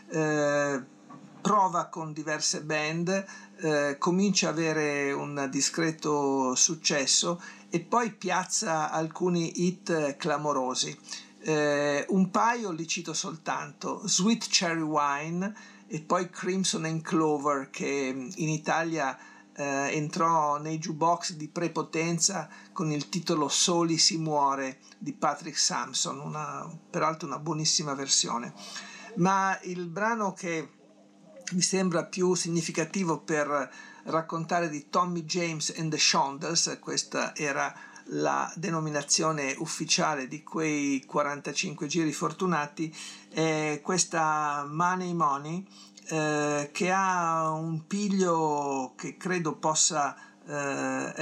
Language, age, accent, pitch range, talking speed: Italian, 50-69, native, 145-175 Hz, 110 wpm